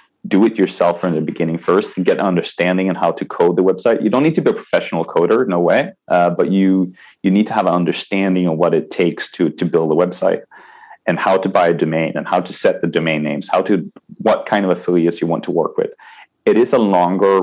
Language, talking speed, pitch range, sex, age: Danish, 250 wpm, 85-100 Hz, male, 30-49